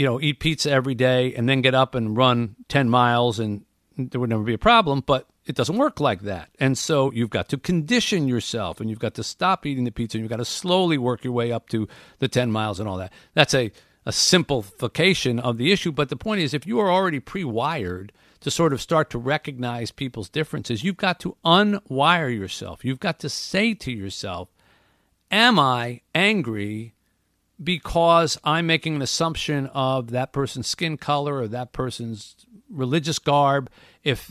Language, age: English, 50-69